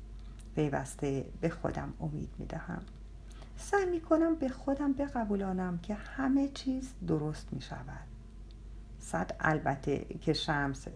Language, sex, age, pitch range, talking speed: Persian, female, 50-69, 155-230 Hz, 105 wpm